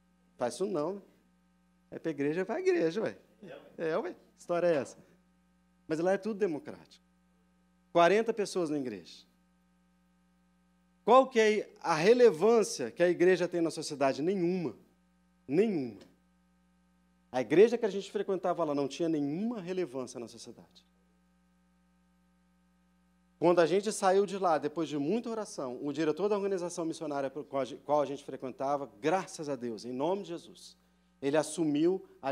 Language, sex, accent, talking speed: Portuguese, male, Brazilian, 155 wpm